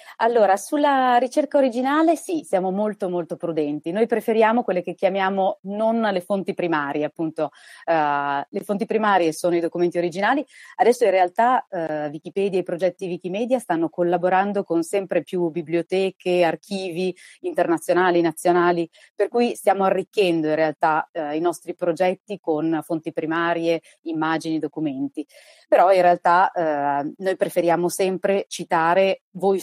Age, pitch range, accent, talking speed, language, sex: 30-49, 165-200 Hz, native, 130 wpm, Italian, female